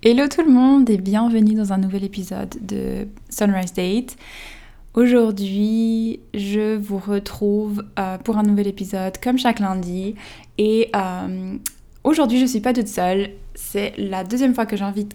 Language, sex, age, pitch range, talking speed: French, female, 20-39, 190-210 Hz, 160 wpm